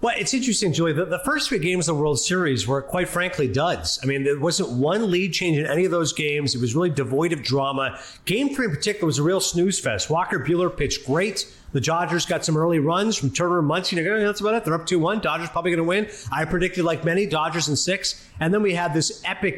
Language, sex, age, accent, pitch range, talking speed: English, male, 30-49, American, 145-180 Hz, 255 wpm